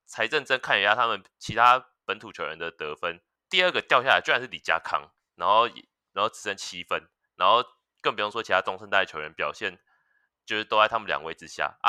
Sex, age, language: male, 20-39, Chinese